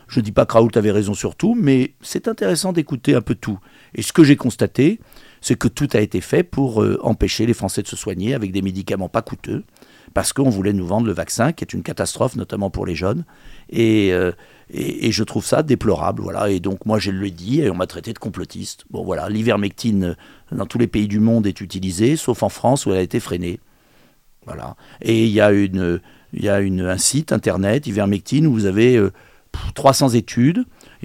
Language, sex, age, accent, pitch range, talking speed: French, male, 50-69, French, 105-135 Hz, 225 wpm